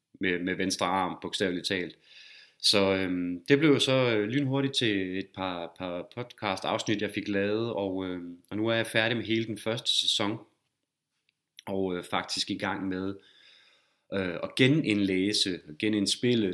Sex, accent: male, native